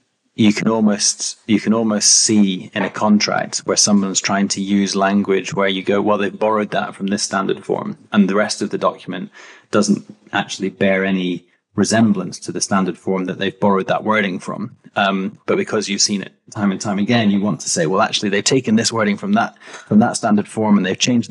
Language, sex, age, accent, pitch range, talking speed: English, male, 20-39, British, 100-115 Hz, 215 wpm